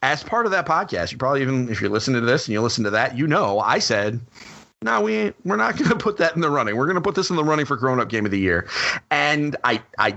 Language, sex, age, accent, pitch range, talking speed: English, male, 30-49, American, 110-150 Hz, 305 wpm